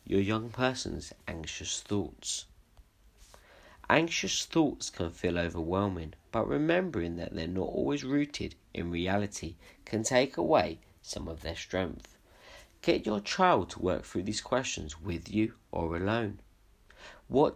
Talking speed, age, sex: 135 wpm, 40-59, male